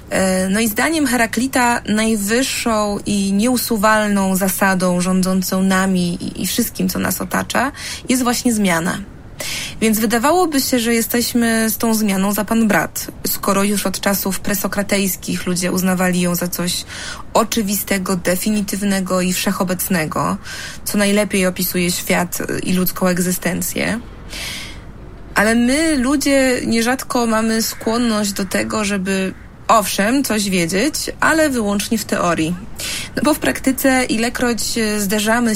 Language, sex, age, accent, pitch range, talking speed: Polish, female, 20-39, native, 190-230 Hz, 120 wpm